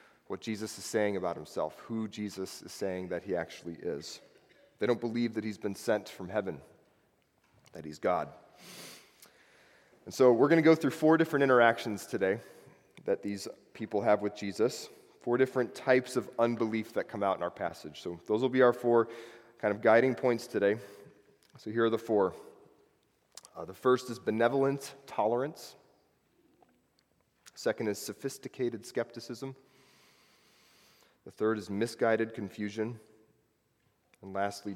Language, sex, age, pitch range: English, male, 30-49, 100-120 Hz